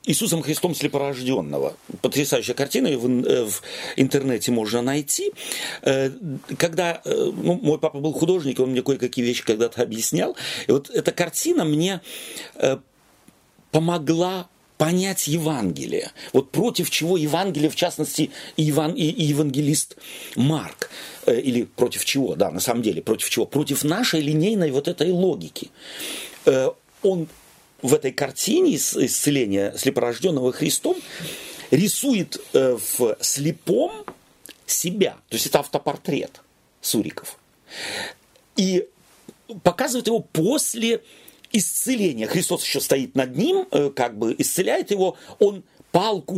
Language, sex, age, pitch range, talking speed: Russian, male, 40-59, 140-195 Hz, 115 wpm